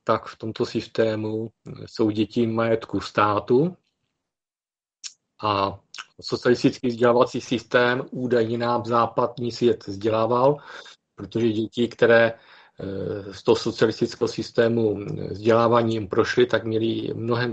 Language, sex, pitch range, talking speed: Czech, male, 110-120 Hz, 105 wpm